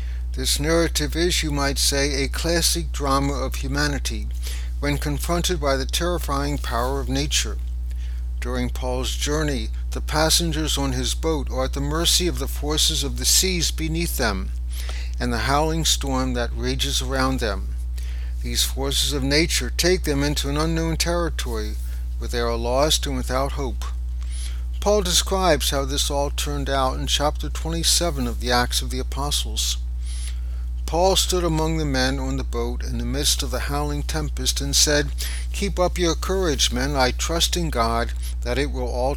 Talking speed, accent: 170 wpm, American